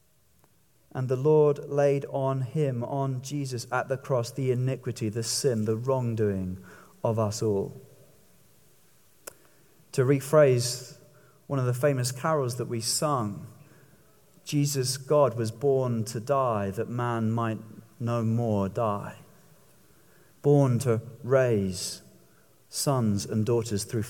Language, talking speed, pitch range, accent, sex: English, 120 wpm, 120-165 Hz, British, male